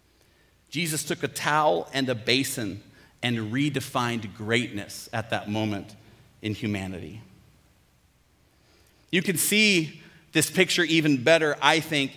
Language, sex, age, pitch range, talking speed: English, male, 40-59, 125-155 Hz, 120 wpm